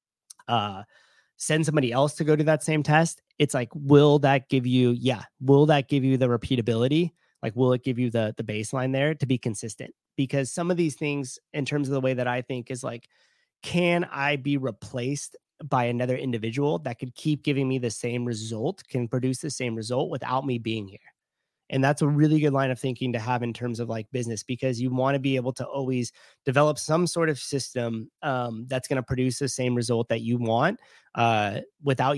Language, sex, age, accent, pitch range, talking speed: English, male, 30-49, American, 115-140 Hz, 215 wpm